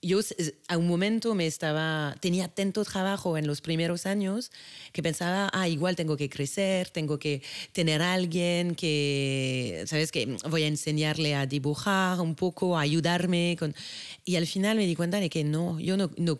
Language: Spanish